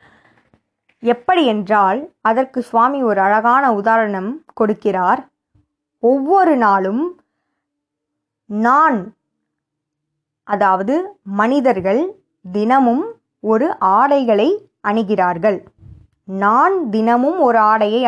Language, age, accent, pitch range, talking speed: Tamil, 20-39, native, 190-255 Hz, 65 wpm